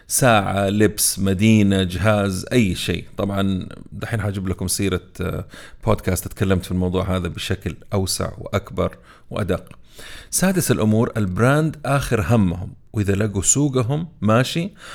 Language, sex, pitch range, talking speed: Arabic, male, 100-130 Hz, 115 wpm